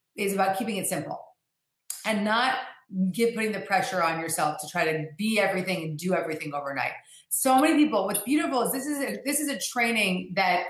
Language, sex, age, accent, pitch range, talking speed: English, female, 30-49, American, 180-220 Hz, 200 wpm